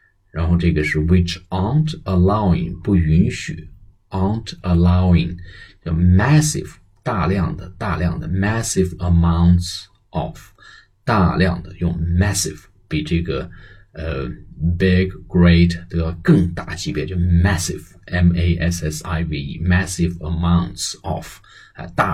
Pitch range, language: 85-95 Hz, Chinese